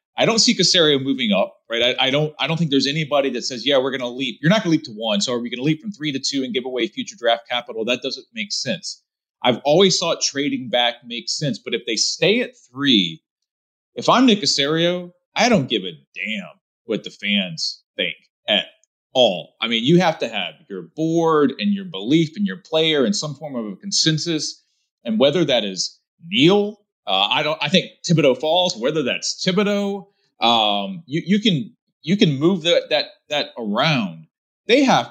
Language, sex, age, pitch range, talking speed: English, male, 30-49, 135-205 Hz, 210 wpm